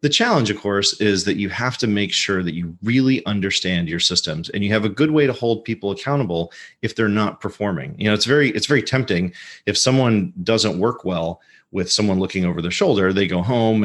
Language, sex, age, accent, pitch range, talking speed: English, male, 30-49, American, 90-110 Hz, 225 wpm